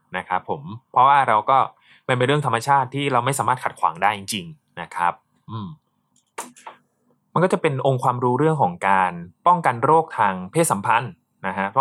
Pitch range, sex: 125-155 Hz, male